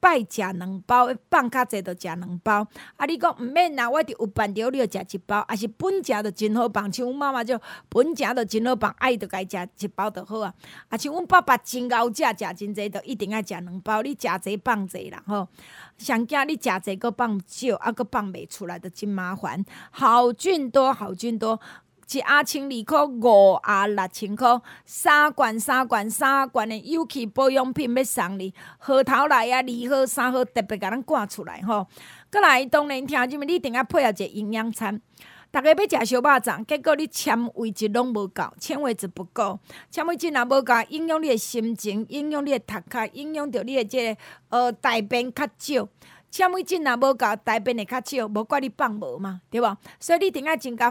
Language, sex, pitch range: Chinese, female, 215-275 Hz